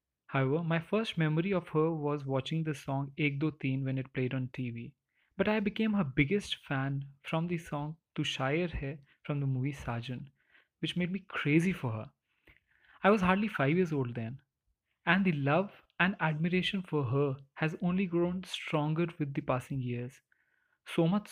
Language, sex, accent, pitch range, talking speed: Hindi, male, native, 140-180 Hz, 180 wpm